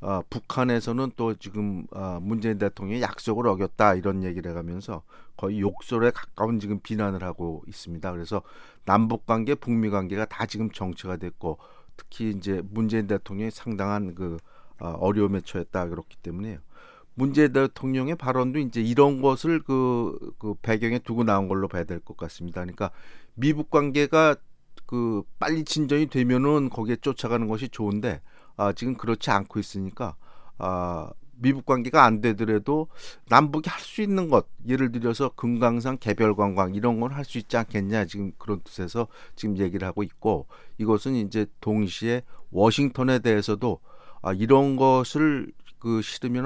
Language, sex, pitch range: Korean, male, 100-130 Hz